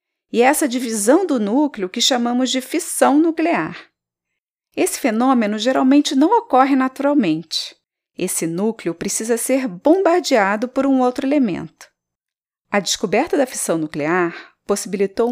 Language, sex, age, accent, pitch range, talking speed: Portuguese, female, 40-59, Brazilian, 200-275 Hz, 120 wpm